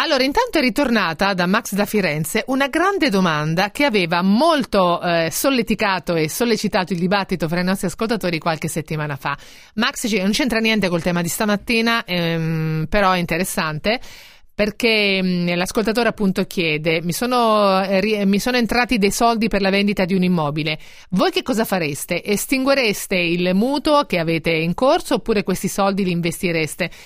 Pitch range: 170-215 Hz